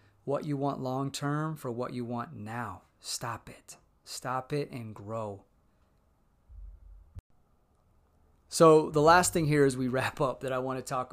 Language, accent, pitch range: English, American, 115-145 Hz